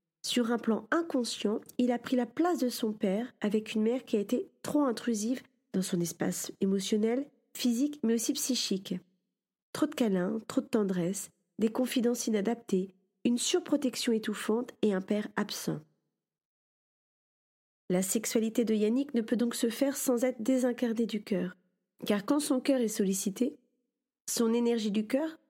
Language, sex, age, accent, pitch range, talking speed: French, female, 40-59, French, 205-245 Hz, 160 wpm